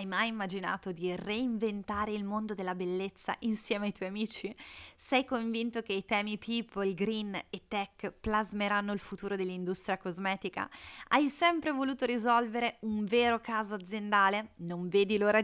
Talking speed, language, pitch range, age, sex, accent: 145 wpm, Italian, 185-230 Hz, 20-39, female, native